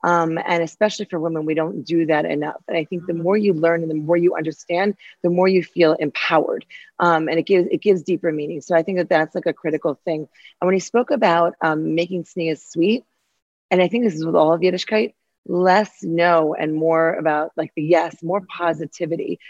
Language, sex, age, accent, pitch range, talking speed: English, female, 30-49, American, 160-195 Hz, 220 wpm